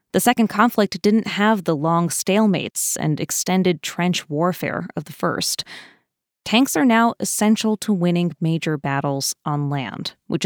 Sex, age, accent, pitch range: female, 20-39, American, 170-215 Hz